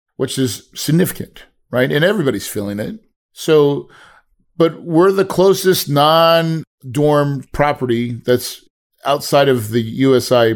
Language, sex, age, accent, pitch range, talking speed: English, male, 40-59, American, 120-145 Hz, 115 wpm